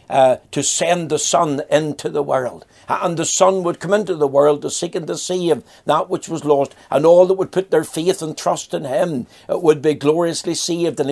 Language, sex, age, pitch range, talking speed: English, male, 60-79, 130-160 Hz, 225 wpm